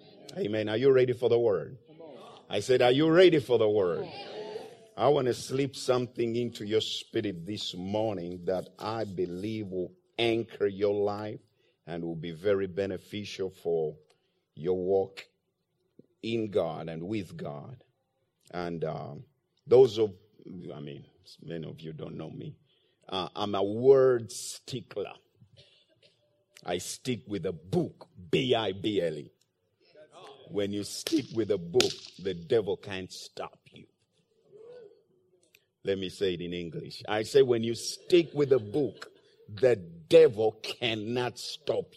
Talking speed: 140 wpm